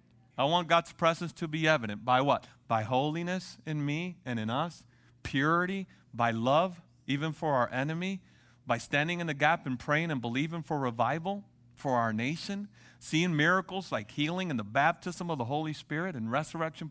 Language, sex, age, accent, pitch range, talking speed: English, male, 40-59, American, 120-170 Hz, 180 wpm